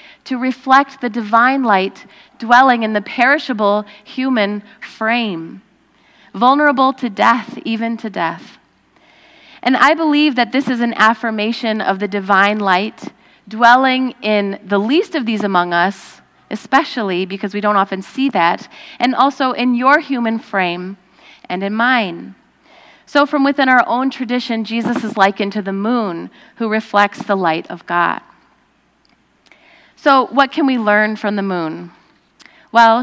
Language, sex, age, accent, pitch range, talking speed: English, female, 30-49, American, 200-250 Hz, 145 wpm